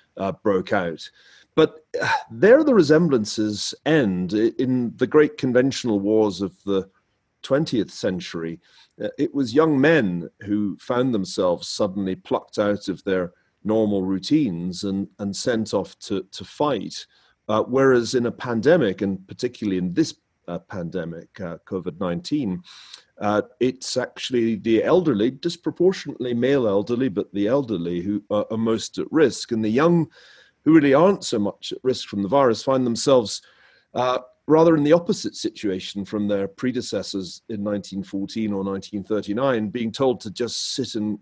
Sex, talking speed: male, 145 wpm